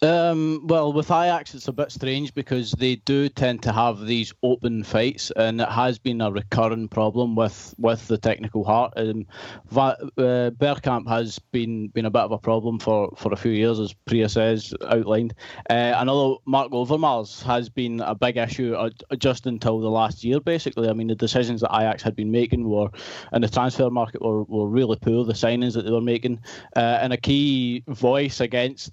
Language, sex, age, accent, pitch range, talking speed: English, male, 20-39, British, 115-130 Hz, 200 wpm